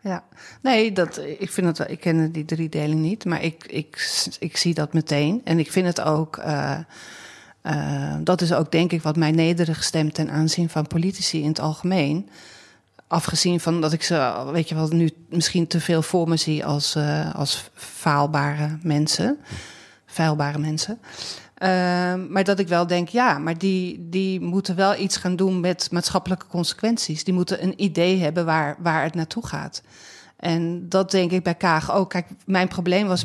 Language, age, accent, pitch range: Dutch, 40-59, Dutch, 160-185 Hz